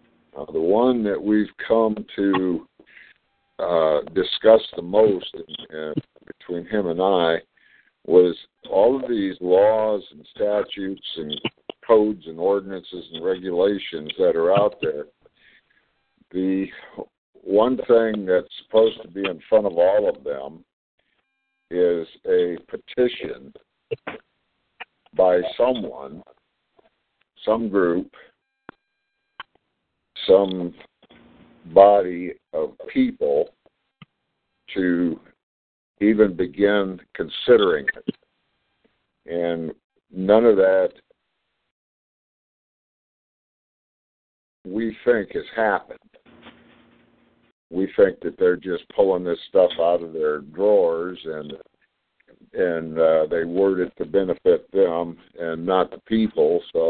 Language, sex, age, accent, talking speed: English, male, 60-79, American, 100 wpm